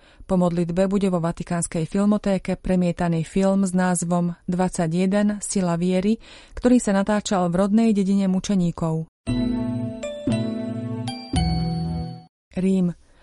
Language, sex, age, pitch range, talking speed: Slovak, female, 30-49, 170-200 Hz, 95 wpm